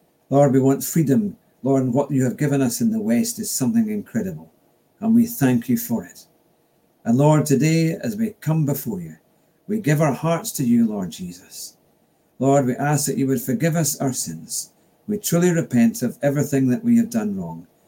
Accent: British